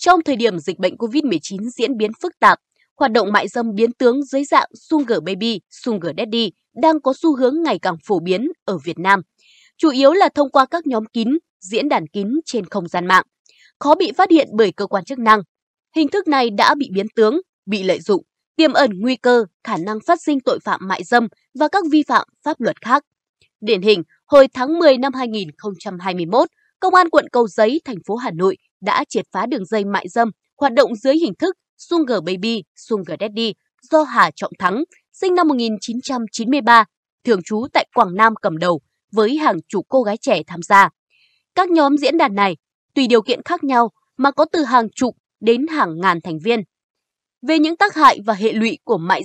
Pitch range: 205-295 Hz